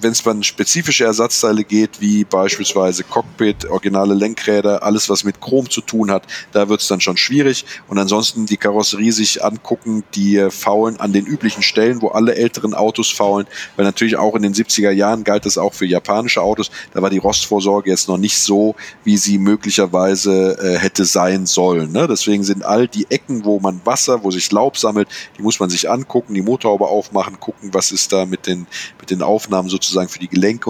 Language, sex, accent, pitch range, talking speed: German, male, German, 95-110 Hz, 205 wpm